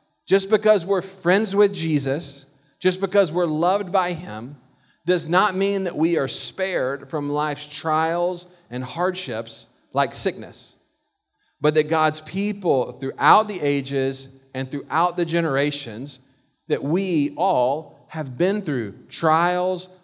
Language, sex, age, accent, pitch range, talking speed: English, male, 40-59, American, 150-210 Hz, 130 wpm